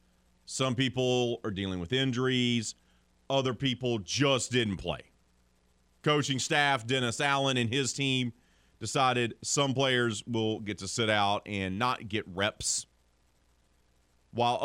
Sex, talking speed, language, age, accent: male, 125 wpm, English, 40-59, American